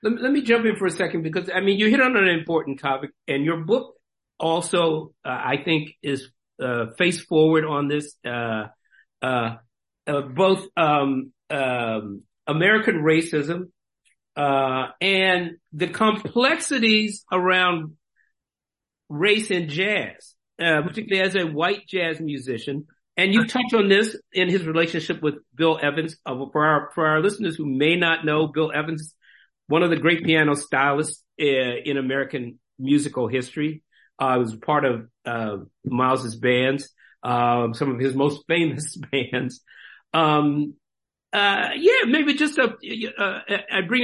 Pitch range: 140-195 Hz